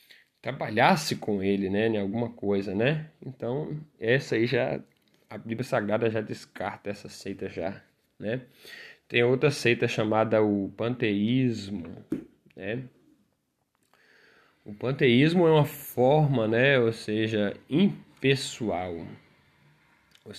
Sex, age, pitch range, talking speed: male, 20-39, 100-125 Hz, 110 wpm